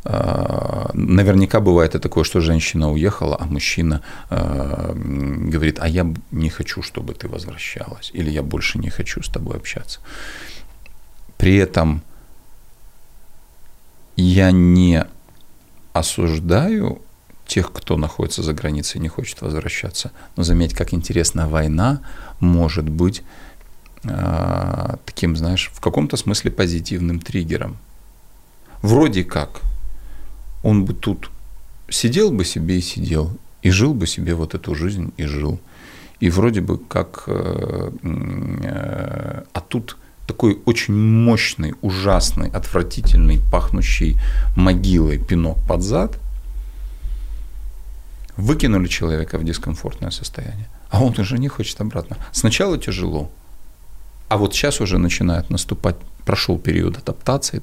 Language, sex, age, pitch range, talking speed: Russian, male, 40-59, 80-105 Hz, 115 wpm